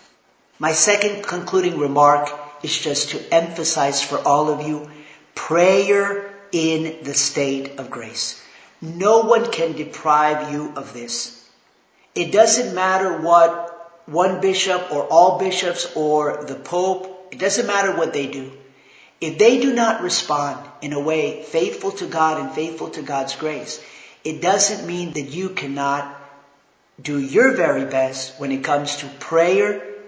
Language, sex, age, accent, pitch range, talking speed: English, male, 50-69, American, 145-180 Hz, 150 wpm